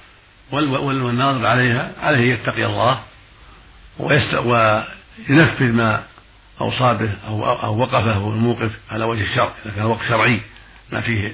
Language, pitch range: Arabic, 105-125 Hz